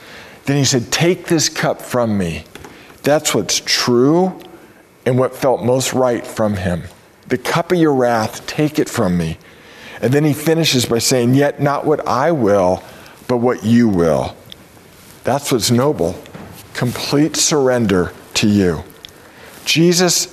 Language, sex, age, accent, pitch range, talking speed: English, male, 50-69, American, 120-155 Hz, 150 wpm